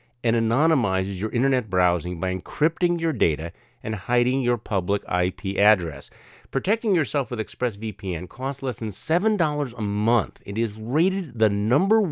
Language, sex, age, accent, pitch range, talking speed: English, male, 50-69, American, 100-135 Hz, 150 wpm